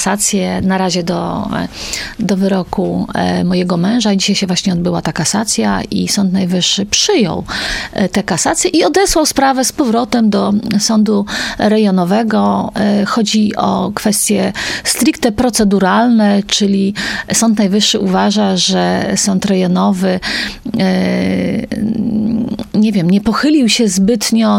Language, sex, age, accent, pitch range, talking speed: Polish, female, 40-59, native, 195-230 Hz, 110 wpm